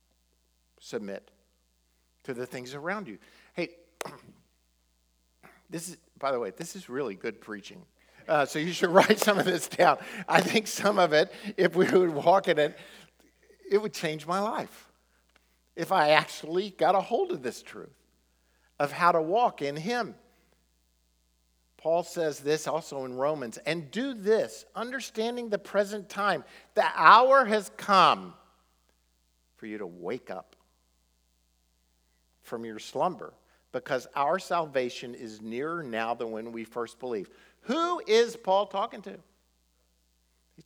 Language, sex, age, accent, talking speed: English, male, 50-69, American, 145 wpm